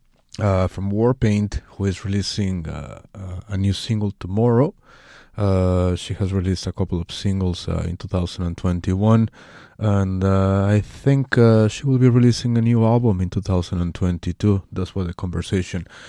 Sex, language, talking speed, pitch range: male, English, 155 wpm, 90-105 Hz